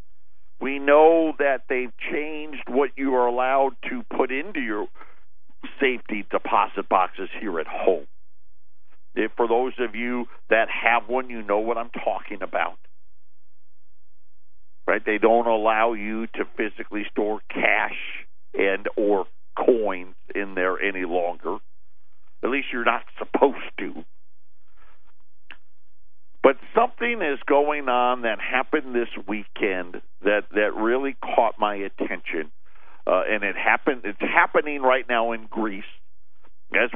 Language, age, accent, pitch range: English, 50-69, American, 105-140 Hz